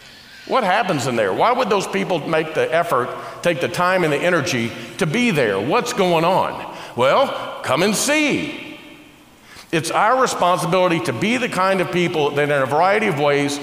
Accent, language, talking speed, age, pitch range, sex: American, English, 185 wpm, 50-69, 145-195 Hz, male